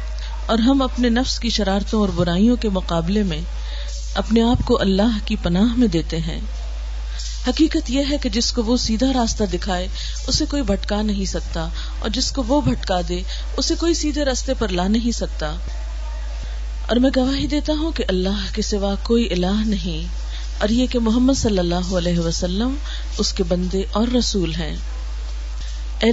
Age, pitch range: 40-59, 165-240 Hz